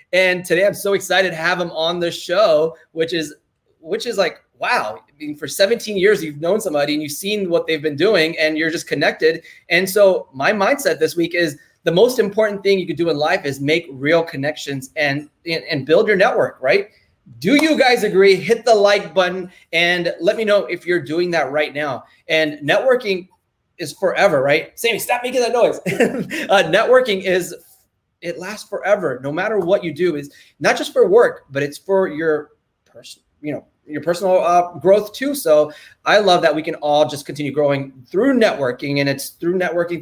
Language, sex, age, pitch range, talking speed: English, male, 20-39, 150-195 Hz, 200 wpm